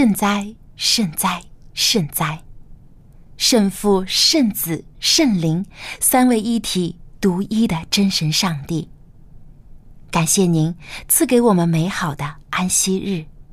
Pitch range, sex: 155-225 Hz, female